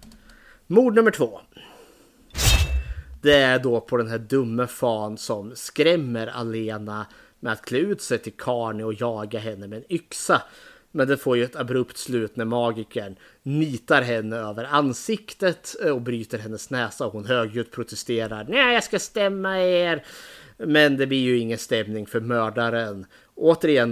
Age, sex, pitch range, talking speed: 30-49, male, 110-145 Hz, 155 wpm